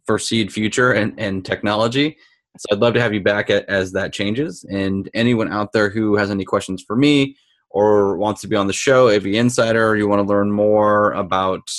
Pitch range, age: 105-125 Hz, 20-39